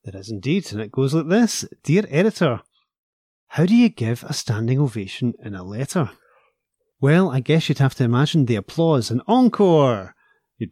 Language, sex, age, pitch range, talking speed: English, male, 30-49, 110-145 Hz, 180 wpm